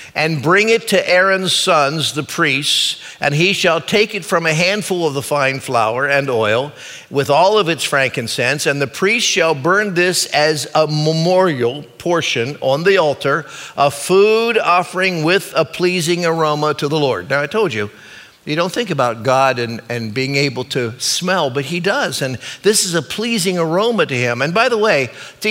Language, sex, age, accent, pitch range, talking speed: English, male, 50-69, American, 135-180 Hz, 190 wpm